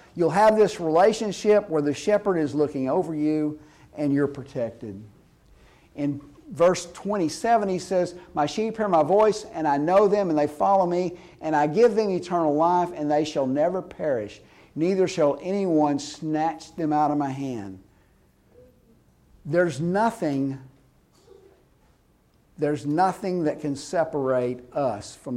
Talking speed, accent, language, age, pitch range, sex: 145 wpm, American, English, 50-69, 145-210 Hz, male